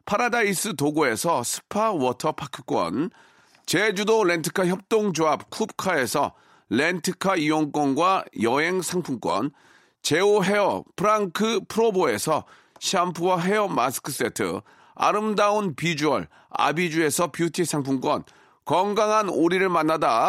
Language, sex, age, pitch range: Korean, male, 40-59, 150-205 Hz